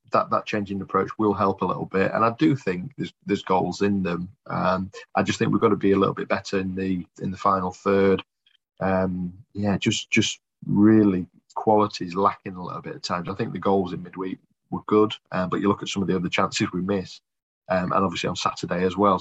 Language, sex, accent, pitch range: English, male, British, 95-105 Hz